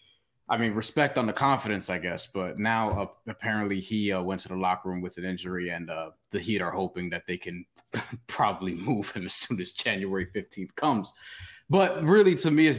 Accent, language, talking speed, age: American, English, 210 wpm, 20-39